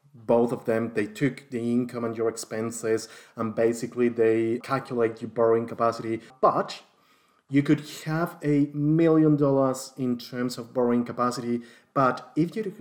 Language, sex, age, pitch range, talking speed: English, male, 20-39, 120-145 Hz, 150 wpm